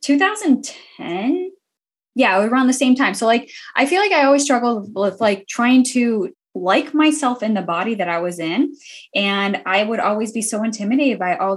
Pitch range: 180-240 Hz